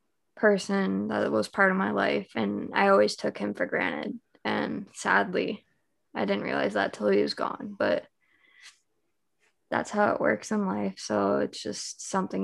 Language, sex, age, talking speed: English, female, 10-29, 170 wpm